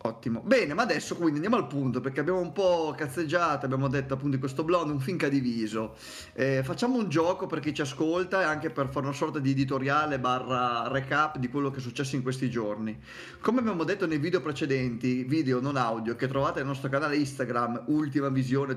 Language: Italian